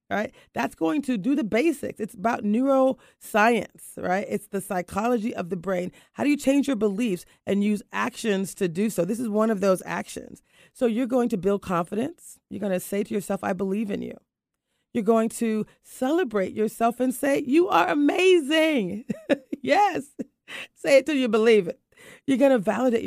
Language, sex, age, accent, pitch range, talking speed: English, female, 40-59, American, 200-275 Hz, 185 wpm